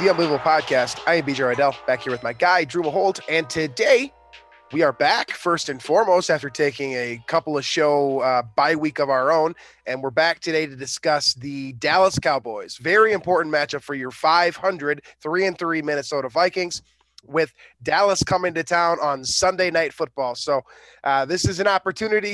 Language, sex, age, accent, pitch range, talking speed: English, male, 20-39, American, 145-185 Hz, 185 wpm